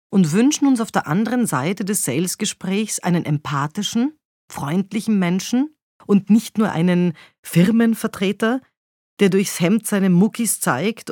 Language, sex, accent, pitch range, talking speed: German, female, German, 160-205 Hz, 130 wpm